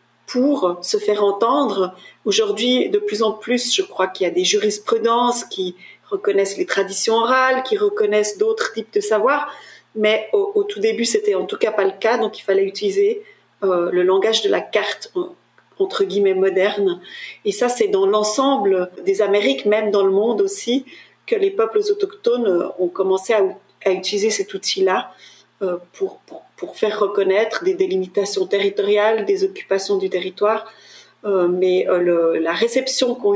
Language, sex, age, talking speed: French, female, 40-59, 170 wpm